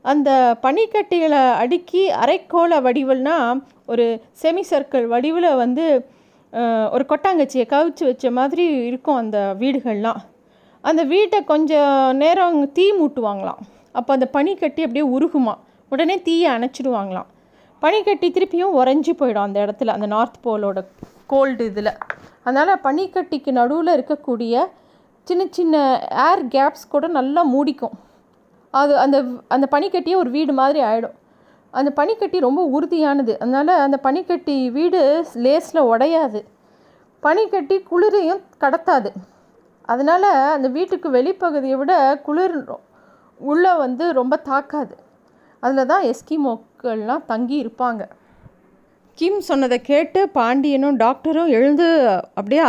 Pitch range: 255-335 Hz